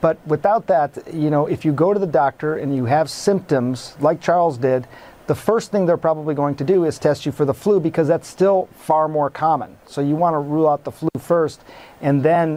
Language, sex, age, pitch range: English, male, 40-59, 140-160 Hz